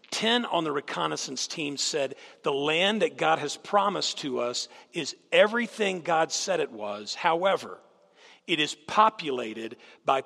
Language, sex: English, male